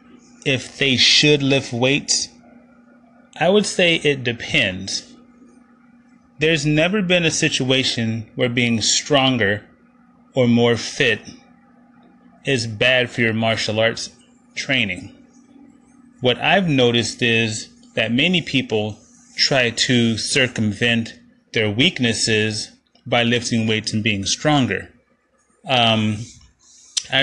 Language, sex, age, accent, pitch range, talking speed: English, male, 30-49, American, 115-165 Hz, 105 wpm